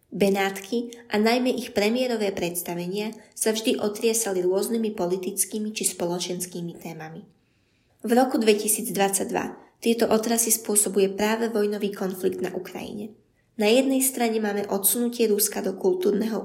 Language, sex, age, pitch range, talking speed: Slovak, female, 20-39, 195-230 Hz, 120 wpm